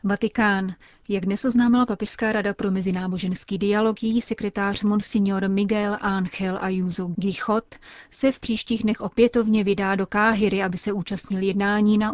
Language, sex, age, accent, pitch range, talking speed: Czech, female, 30-49, native, 190-210 Hz, 140 wpm